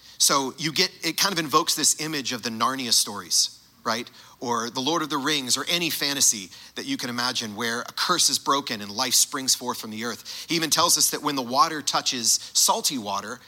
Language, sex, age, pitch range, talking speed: English, male, 40-59, 115-145 Hz, 225 wpm